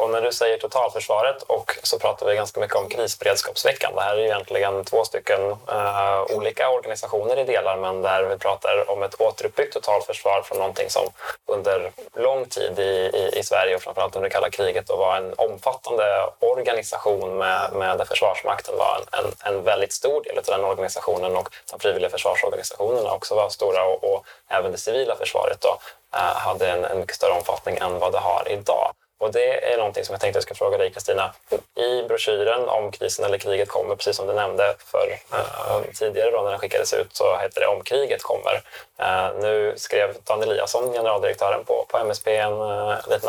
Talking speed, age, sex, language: 195 wpm, 20-39, male, Swedish